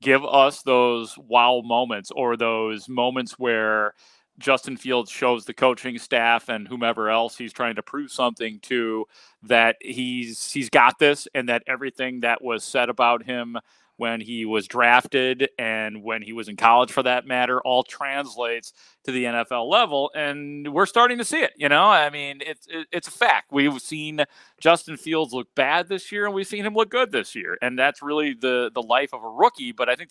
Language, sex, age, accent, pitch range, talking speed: English, male, 40-59, American, 115-140 Hz, 195 wpm